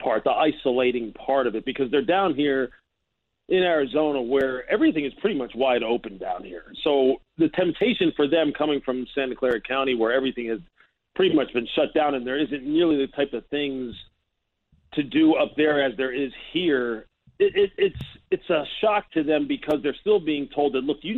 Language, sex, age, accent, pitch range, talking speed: English, male, 40-59, American, 135-170 Hz, 195 wpm